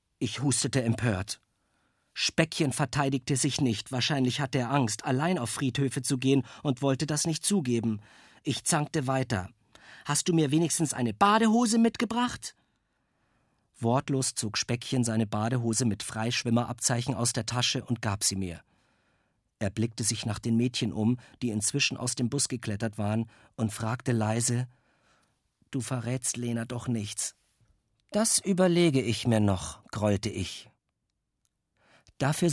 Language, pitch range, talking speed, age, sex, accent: German, 115-150 Hz, 140 wpm, 50-69, male, German